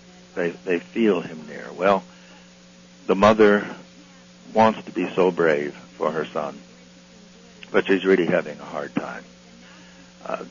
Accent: American